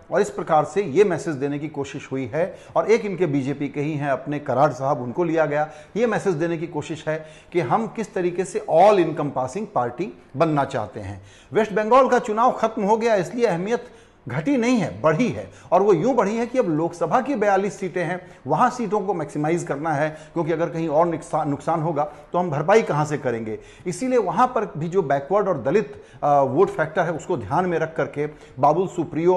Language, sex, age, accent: Hindi, male, 40-59, native